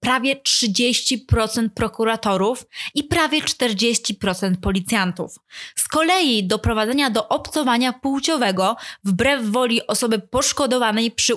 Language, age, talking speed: Polish, 20-39, 95 wpm